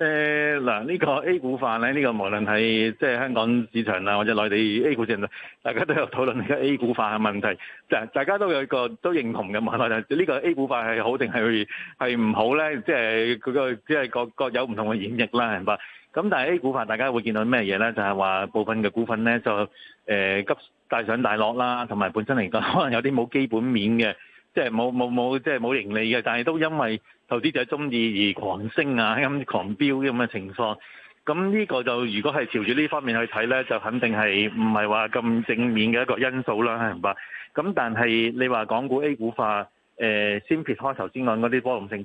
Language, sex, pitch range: Chinese, male, 110-130 Hz